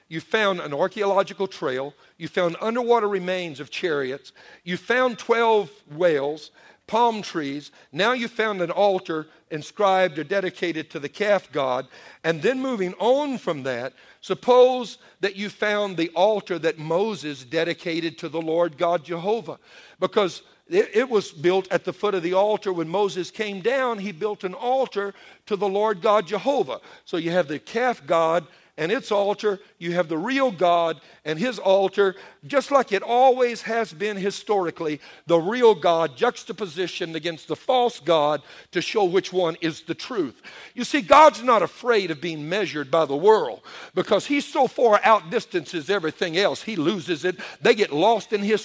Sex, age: male, 50-69